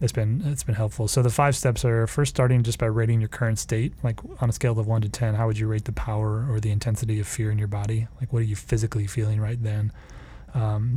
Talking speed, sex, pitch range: 270 wpm, male, 105-125 Hz